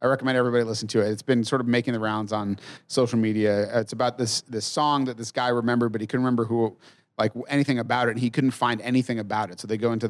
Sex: male